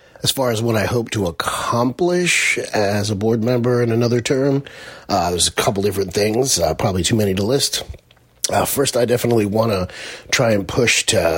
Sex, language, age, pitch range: male, English, 30-49, 95-115 Hz